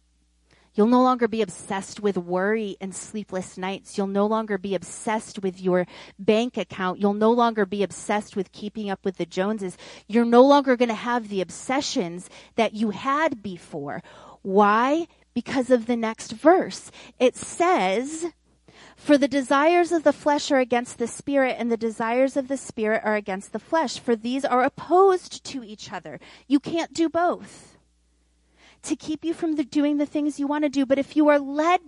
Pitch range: 185-265 Hz